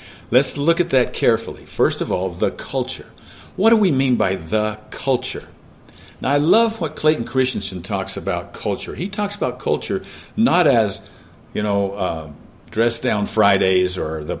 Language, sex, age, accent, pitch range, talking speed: English, male, 50-69, American, 105-175 Hz, 165 wpm